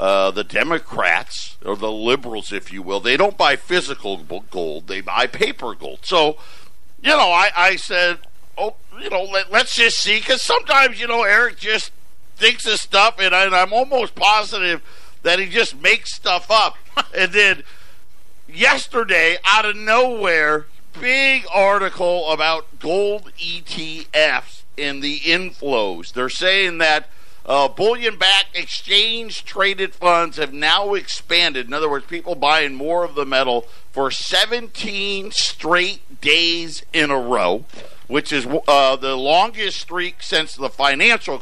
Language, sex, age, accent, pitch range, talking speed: English, male, 50-69, American, 150-220 Hz, 145 wpm